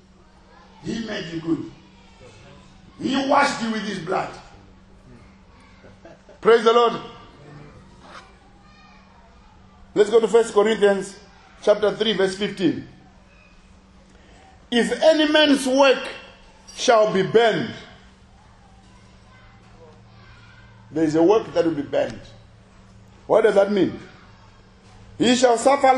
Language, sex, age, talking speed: English, male, 50-69, 100 wpm